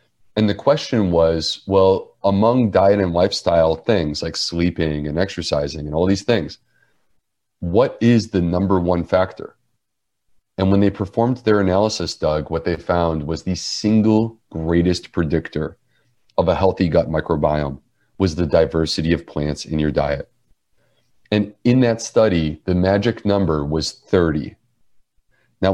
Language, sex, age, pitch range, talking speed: English, male, 30-49, 85-105 Hz, 145 wpm